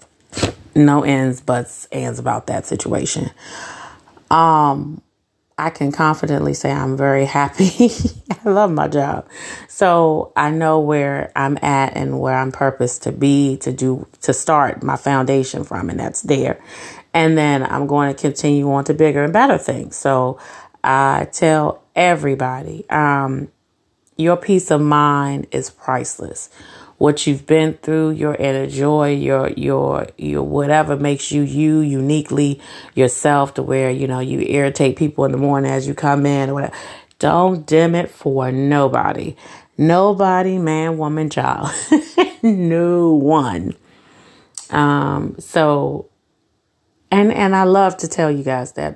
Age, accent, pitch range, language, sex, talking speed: 30-49, American, 135-160 Hz, English, female, 145 wpm